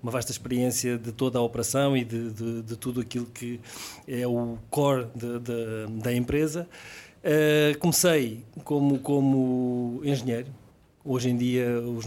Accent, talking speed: Portuguese, 150 wpm